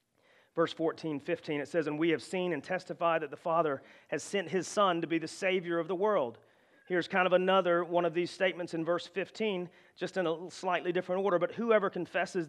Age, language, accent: 40-59, English, American